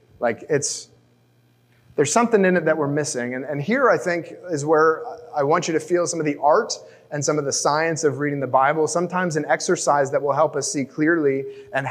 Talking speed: 220 wpm